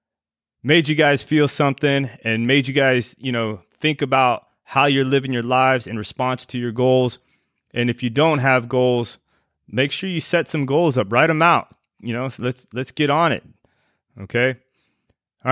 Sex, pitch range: male, 120-150 Hz